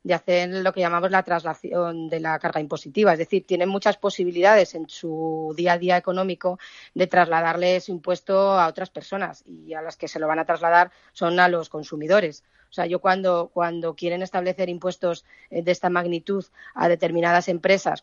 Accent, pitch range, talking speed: Spanish, 165-185 Hz, 185 wpm